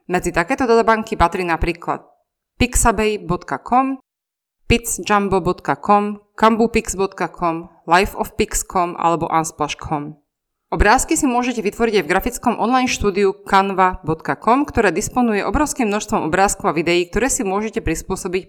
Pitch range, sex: 170-225 Hz, female